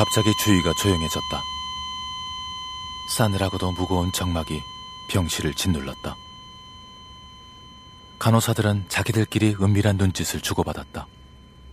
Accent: native